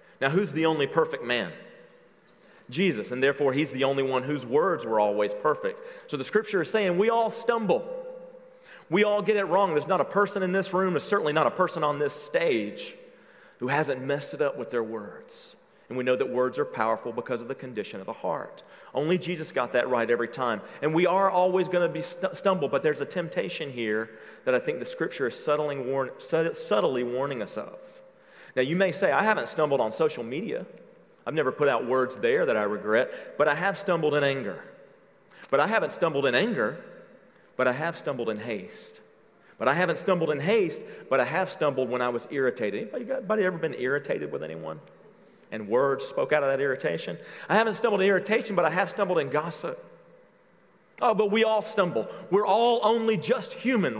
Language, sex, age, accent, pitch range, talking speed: English, male, 40-59, American, 140-235 Hz, 205 wpm